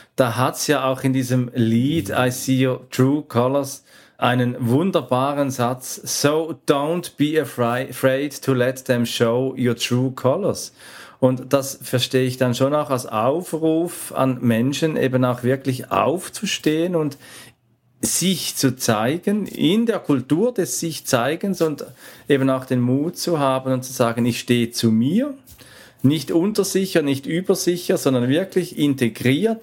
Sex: male